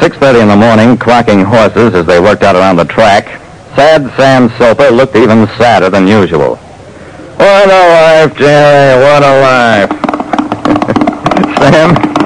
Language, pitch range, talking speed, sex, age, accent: English, 130-170 Hz, 140 wpm, male, 60-79, American